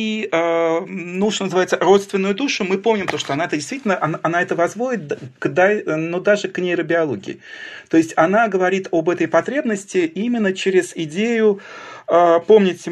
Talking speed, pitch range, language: 150 wpm, 165-210 Hz, Russian